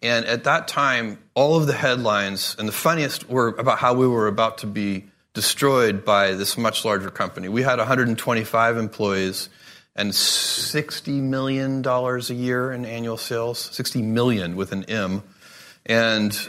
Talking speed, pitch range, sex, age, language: 155 wpm, 105-135 Hz, male, 30-49, Persian